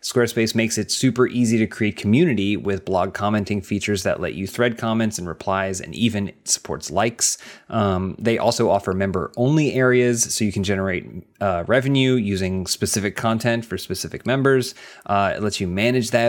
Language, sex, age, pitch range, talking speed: English, male, 30-49, 95-115 Hz, 170 wpm